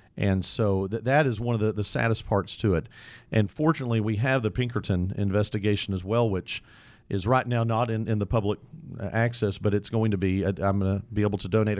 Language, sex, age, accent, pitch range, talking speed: English, male, 40-59, American, 100-120 Hz, 230 wpm